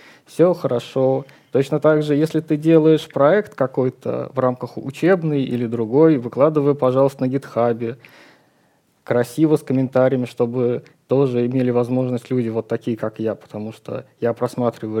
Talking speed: 140 wpm